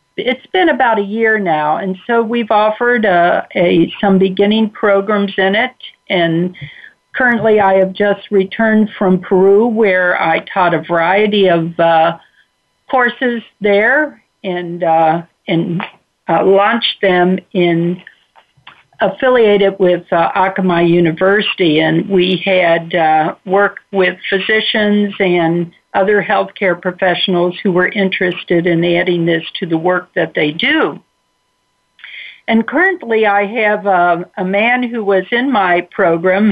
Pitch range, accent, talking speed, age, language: 175-215 Hz, American, 135 wpm, 60-79, English